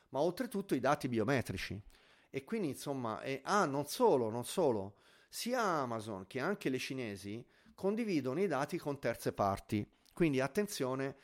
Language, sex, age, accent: Italian, male, 30-49, native